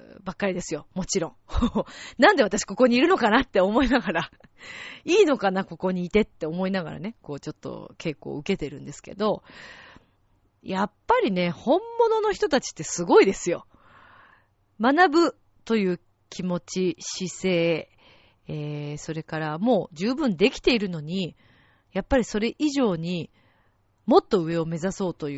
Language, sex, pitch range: Japanese, female, 160-235 Hz